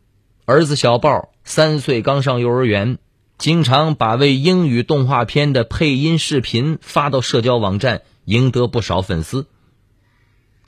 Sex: male